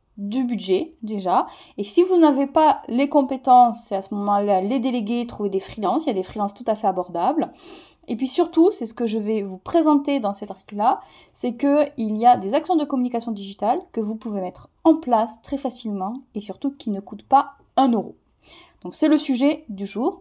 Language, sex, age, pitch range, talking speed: French, female, 20-39, 205-280 Hz, 220 wpm